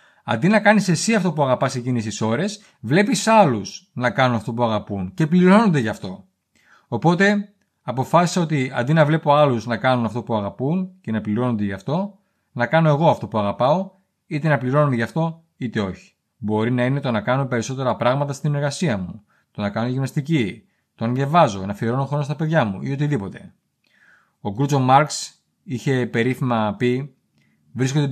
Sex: male